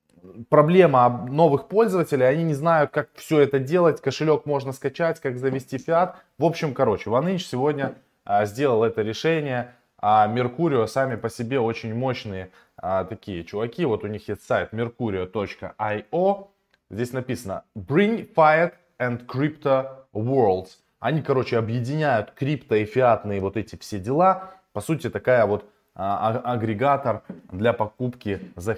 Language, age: Russian, 20-39